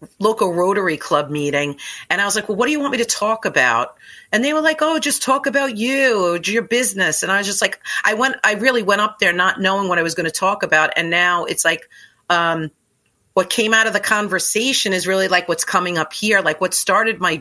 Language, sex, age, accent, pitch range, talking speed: English, female, 40-59, American, 155-200 Hz, 245 wpm